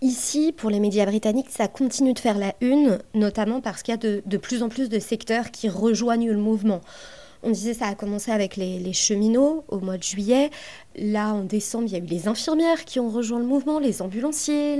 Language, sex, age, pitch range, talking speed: French, female, 30-49, 205-255 Hz, 230 wpm